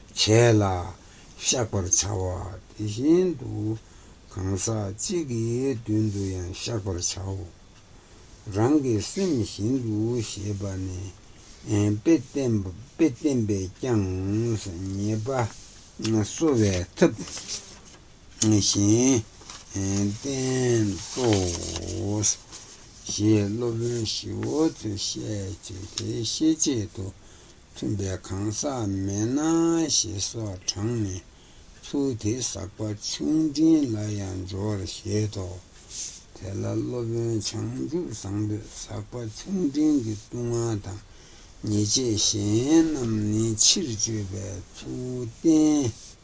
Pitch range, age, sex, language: 95-120 Hz, 60-79, male, Italian